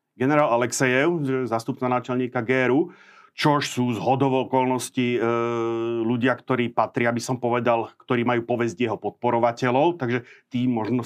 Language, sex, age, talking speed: Slovak, male, 40-59, 130 wpm